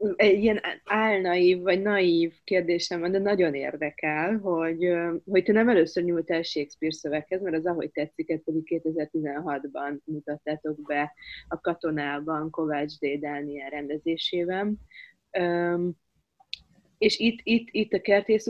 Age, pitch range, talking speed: 20-39, 150-195 Hz, 125 wpm